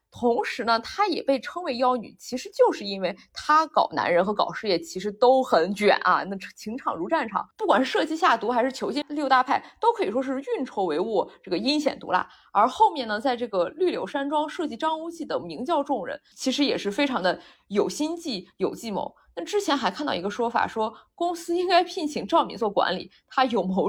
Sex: female